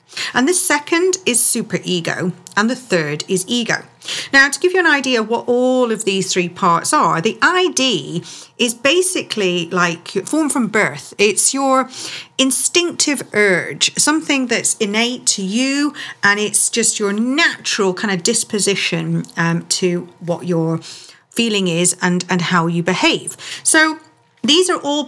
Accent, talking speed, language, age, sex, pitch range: British, 155 wpm, English, 40-59, female, 185-275 Hz